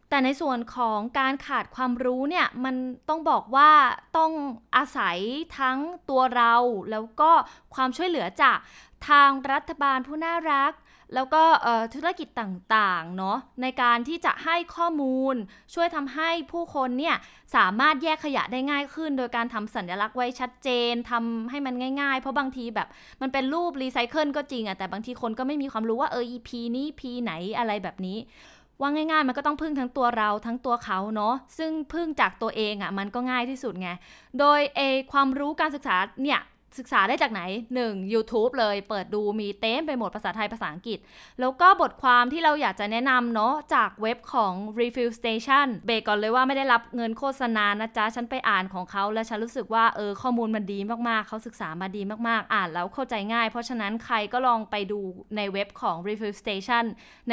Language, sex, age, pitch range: Thai, female, 20-39, 215-275 Hz